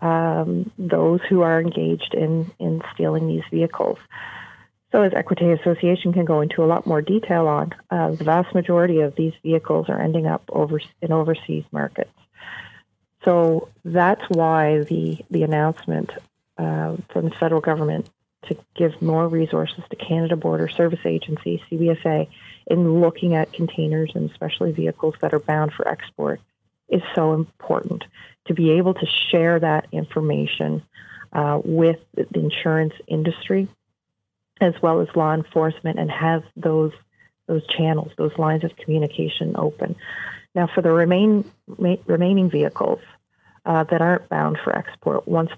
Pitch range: 150-170 Hz